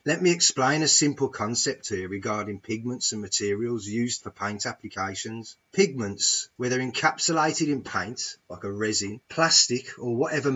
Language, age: English, 30-49